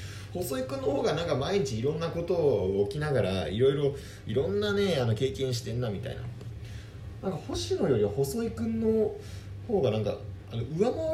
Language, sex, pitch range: Japanese, male, 100-130 Hz